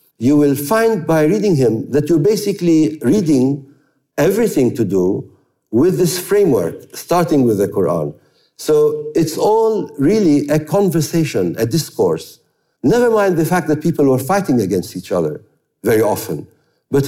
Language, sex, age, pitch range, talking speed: English, male, 50-69, 135-180 Hz, 150 wpm